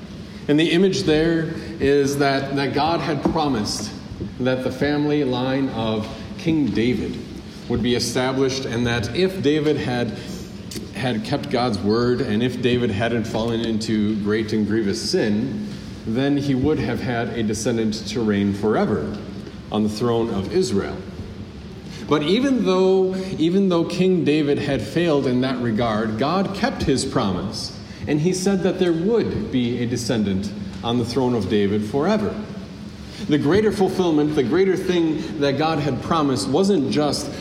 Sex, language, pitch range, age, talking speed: male, English, 115-160 Hz, 40-59, 155 wpm